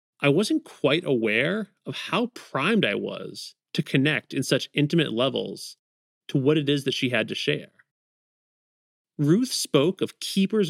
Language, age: English, 30-49